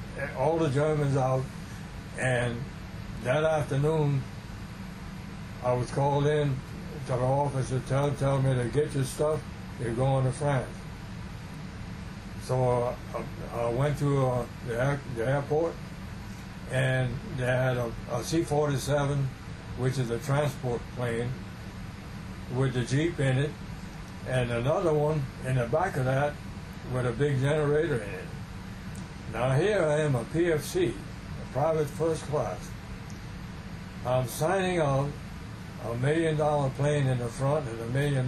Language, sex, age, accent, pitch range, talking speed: English, male, 60-79, American, 120-145 Hz, 135 wpm